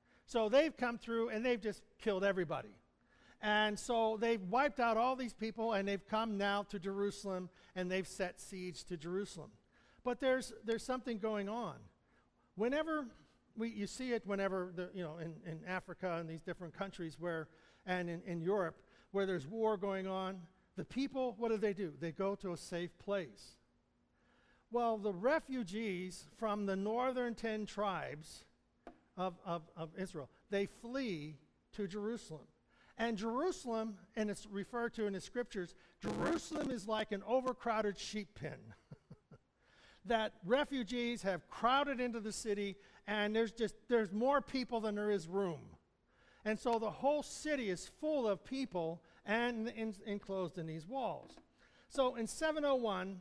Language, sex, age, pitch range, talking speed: English, male, 60-79, 185-235 Hz, 160 wpm